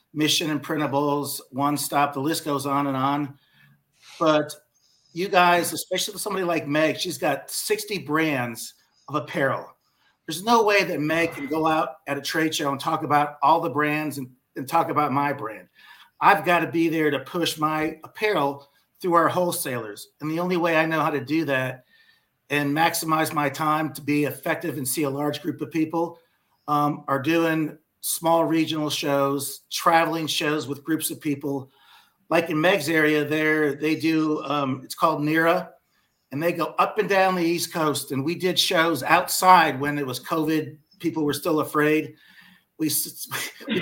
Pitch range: 145-170 Hz